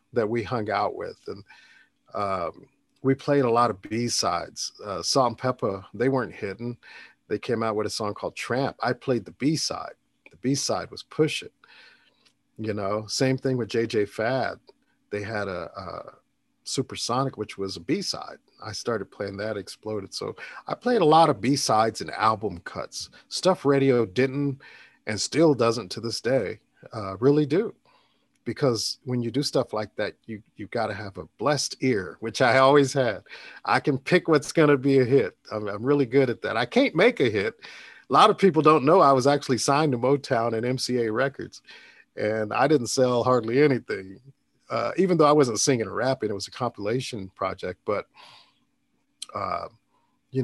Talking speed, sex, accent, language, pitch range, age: 185 wpm, male, American, English, 110-140 Hz, 50-69